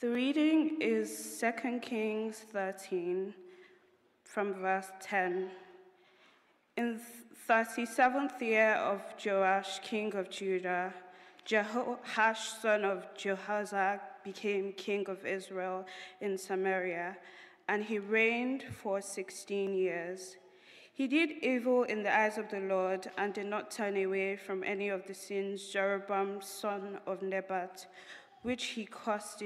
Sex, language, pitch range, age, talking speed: female, English, 190-225 Hz, 20-39, 120 wpm